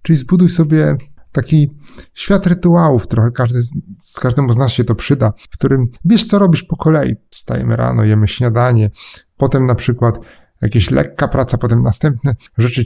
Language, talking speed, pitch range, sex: Polish, 170 wpm, 115-150 Hz, male